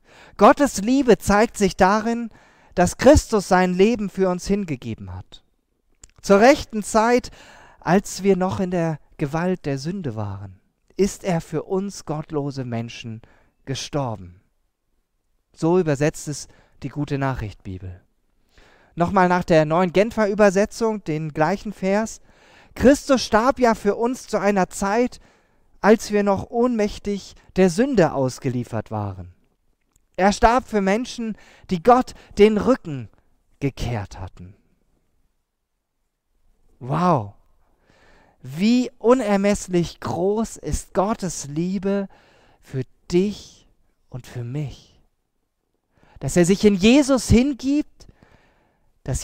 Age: 40-59